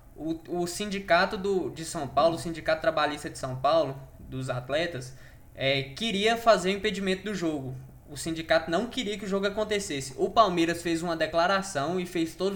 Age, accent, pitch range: 10-29, Brazilian, 150-185 Hz